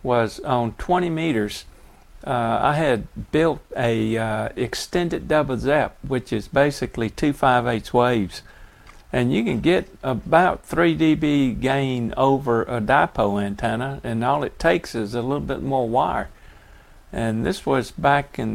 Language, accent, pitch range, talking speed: English, American, 110-135 Hz, 145 wpm